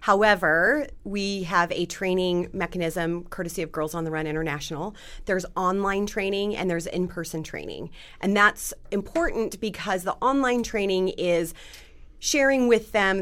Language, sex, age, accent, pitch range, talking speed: English, female, 30-49, American, 165-205 Hz, 140 wpm